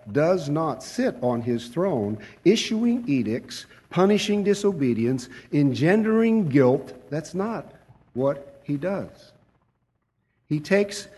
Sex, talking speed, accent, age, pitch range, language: male, 100 wpm, American, 50-69, 125-185 Hz, English